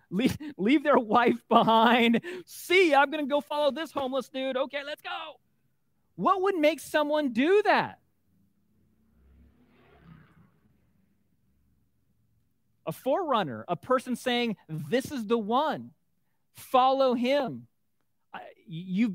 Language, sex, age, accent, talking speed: English, male, 40-59, American, 105 wpm